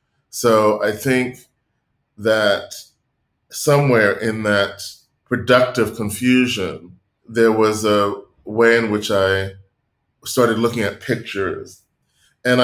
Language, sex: English, male